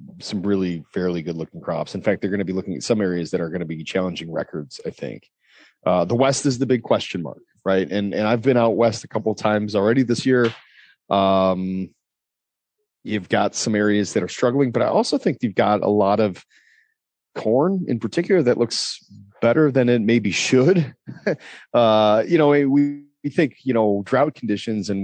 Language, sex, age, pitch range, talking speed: English, male, 30-49, 100-145 Hz, 205 wpm